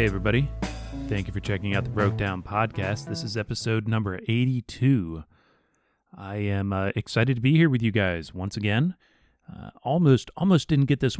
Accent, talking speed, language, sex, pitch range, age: American, 180 wpm, English, male, 100-125 Hz, 30-49